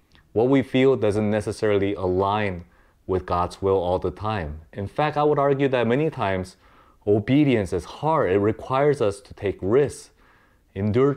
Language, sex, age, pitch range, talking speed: English, male, 30-49, 95-130 Hz, 160 wpm